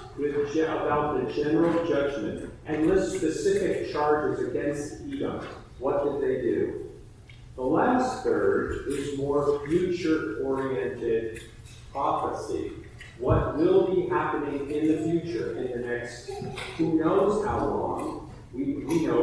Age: 40-59